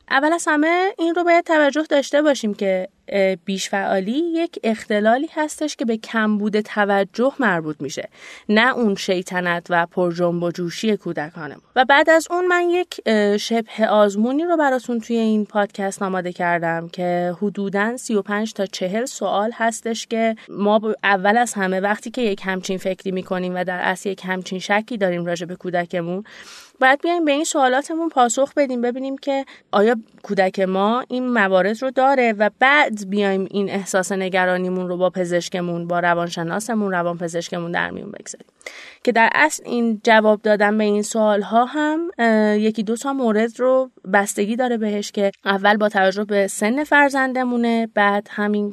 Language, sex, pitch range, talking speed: Persian, female, 190-245 Hz, 160 wpm